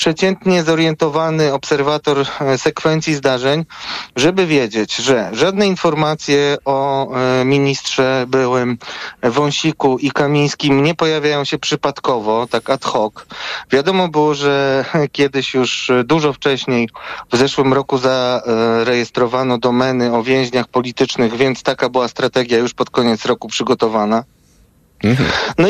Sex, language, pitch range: male, Polish, 130-170 Hz